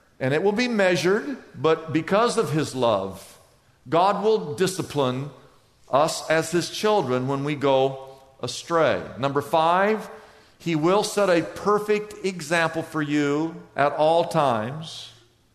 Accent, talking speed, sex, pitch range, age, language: American, 130 wpm, male, 120-170 Hz, 50-69, English